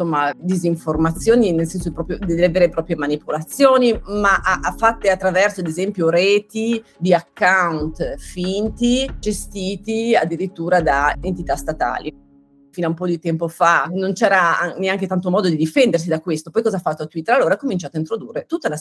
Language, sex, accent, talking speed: Italian, female, native, 165 wpm